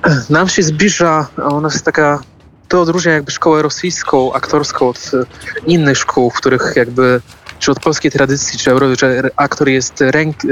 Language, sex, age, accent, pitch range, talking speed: Polish, male, 20-39, native, 125-140 Hz, 150 wpm